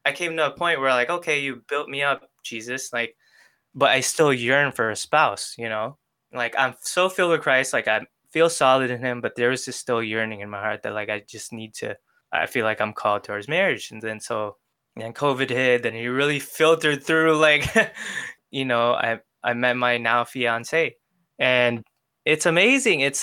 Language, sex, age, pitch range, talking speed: English, male, 20-39, 115-145 Hz, 210 wpm